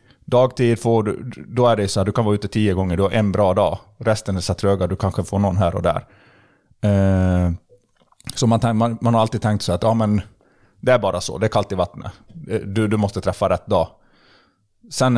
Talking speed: 235 wpm